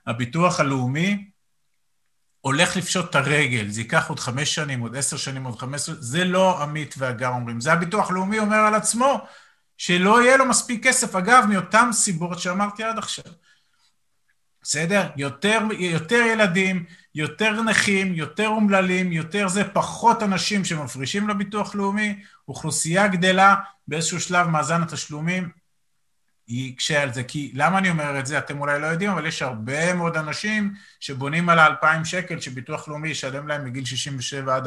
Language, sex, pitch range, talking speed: Hebrew, male, 145-195 Hz, 155 wpm